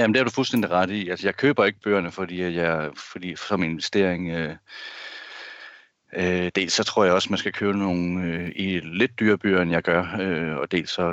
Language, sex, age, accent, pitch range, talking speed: Danish, male, 30-49, native, 90-105 Hz, 220 wpm